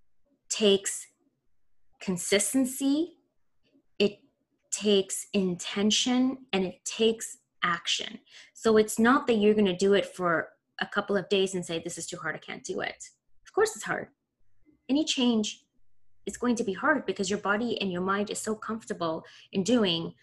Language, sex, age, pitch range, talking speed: English, female, 20-39, 185-230 Hz, 165 wpm